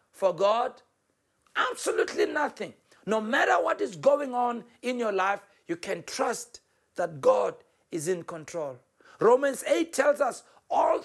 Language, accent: English, South African